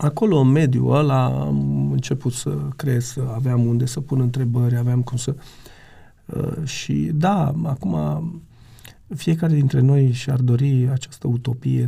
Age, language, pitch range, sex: 40-59, Romanian, 120-145 Hz, male